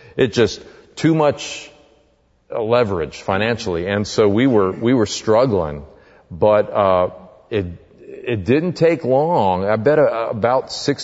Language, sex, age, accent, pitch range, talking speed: English, male, 40-59, American, 100-130 Hz, 130 wpm